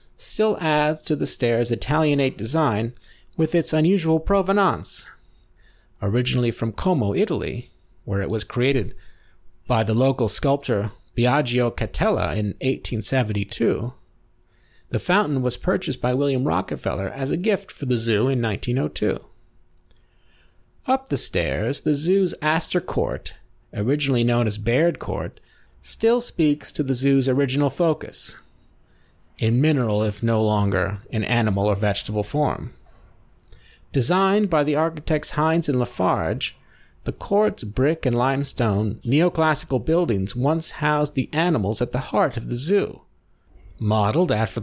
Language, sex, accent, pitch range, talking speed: English, male, American, 110-150 Hz, 130 wpm